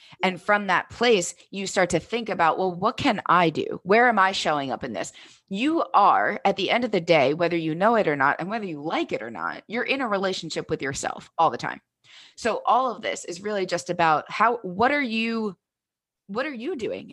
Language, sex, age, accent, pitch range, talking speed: English, female, 20-39, American, 165-210 Hz, 235 wpm